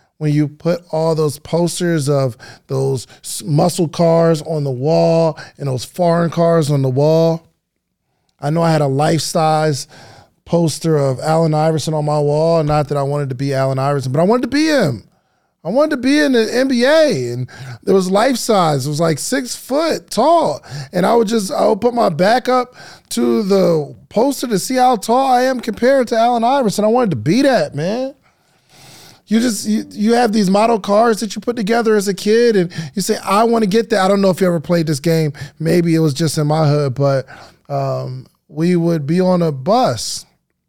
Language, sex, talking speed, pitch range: English, male, 210 wpm, 150-215 Hz